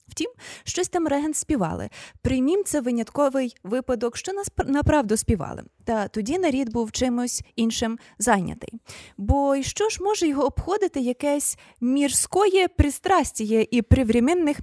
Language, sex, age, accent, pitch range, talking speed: Ukrainian, female, 20-39, native, 225-305 Hz, 125 wpm